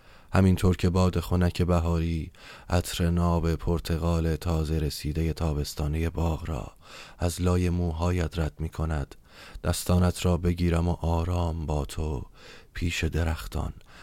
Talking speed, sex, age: 120 wpm, male, 30-49